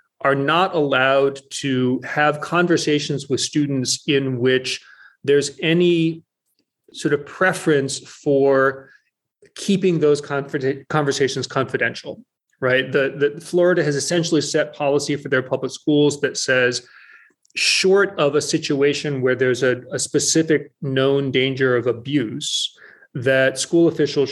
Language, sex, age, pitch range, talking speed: English, male, 30-49, 135-155 Hz, 125 wpm